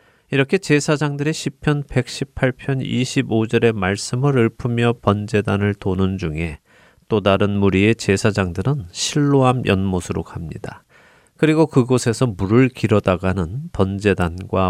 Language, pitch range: Korean, 95-130 Hz